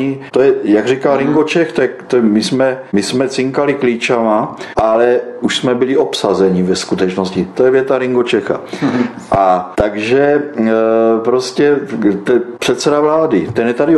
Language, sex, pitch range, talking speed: Czech, male, 115-145 Hz, 135 wpm